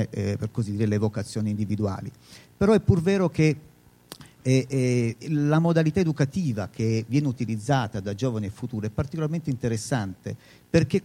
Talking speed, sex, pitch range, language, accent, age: 150 wpm, male, 110-145 Hz, Italian, native, 50-69